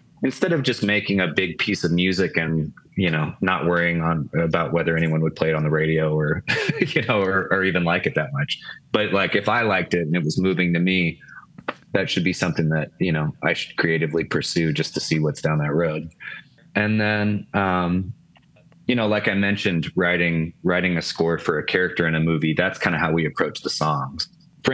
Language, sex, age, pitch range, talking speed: English, male, 20-39, 80-100 Hz, 220 wpm